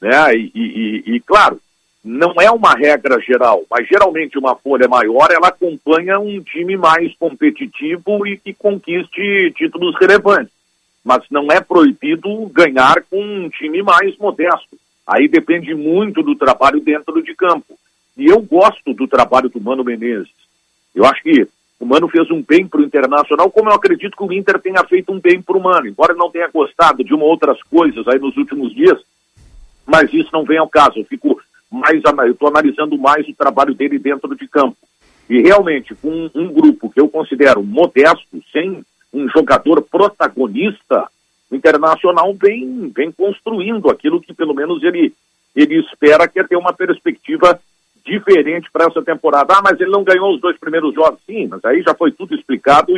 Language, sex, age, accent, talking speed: Portuguese, male, 50-69, Brazilian, 180 wpm